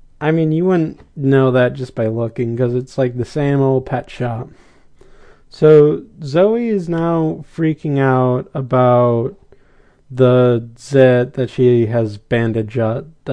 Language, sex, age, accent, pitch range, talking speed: English, male, 20-39, American, 120-150 Hz, 135 wpm